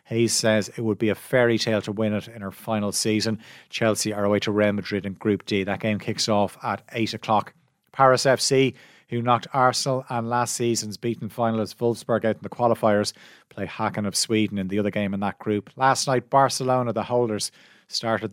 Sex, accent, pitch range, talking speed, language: male, Irish, 105-125 Hz, 205 wpm, English